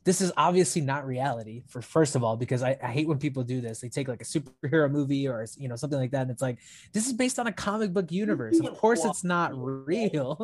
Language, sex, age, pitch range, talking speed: English, male, 20-39, 125-155 Hz, 245 wpm